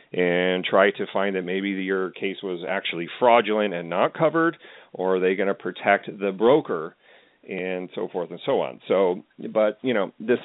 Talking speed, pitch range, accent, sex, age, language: 190 wpm, 90-105 Hz, American, male, 40-59, English